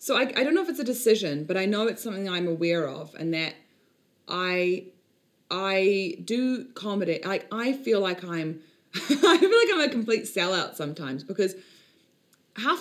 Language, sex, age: English, female, 20-39